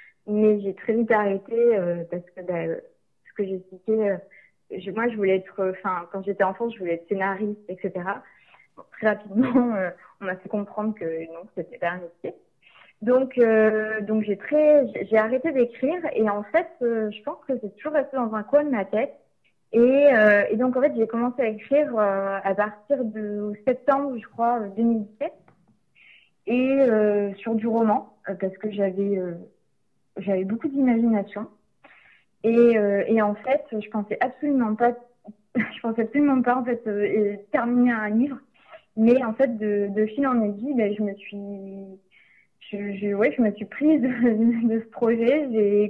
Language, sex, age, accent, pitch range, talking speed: French, female, 20-39, French, 200-245 Hz, 185 wpm